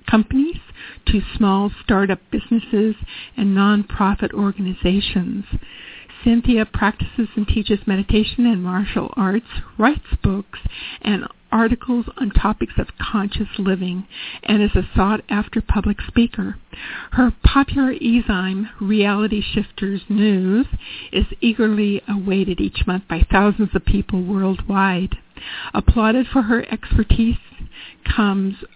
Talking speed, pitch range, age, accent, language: 110 wpm, 195-225 Hz, 50-69, American, English